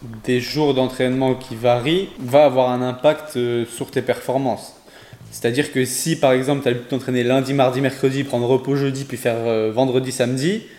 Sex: male